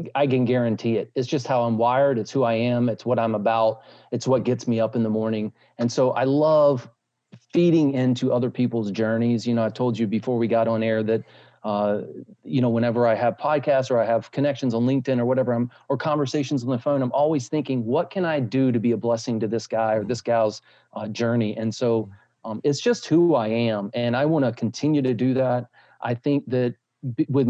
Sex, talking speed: male, 225 wpm